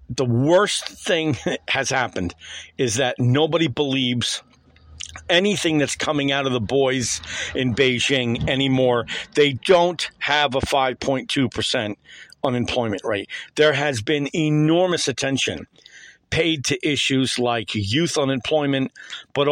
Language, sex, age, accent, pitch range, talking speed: English, male, 50-69, American, 125-150 Hz, 120 wpm